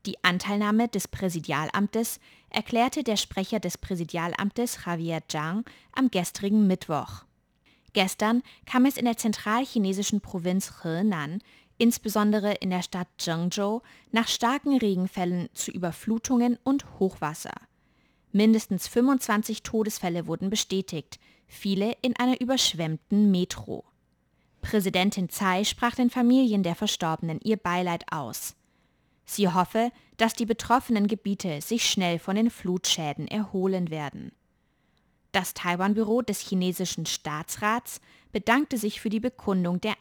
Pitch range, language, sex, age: 175-225 Hz, German, female, 20-39